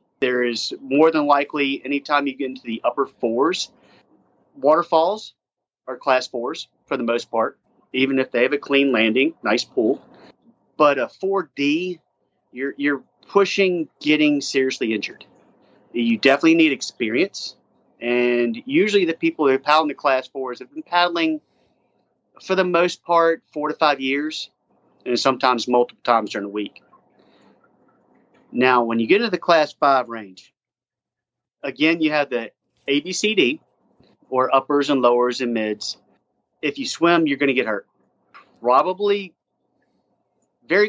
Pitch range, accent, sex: 120-155 Hz, American, male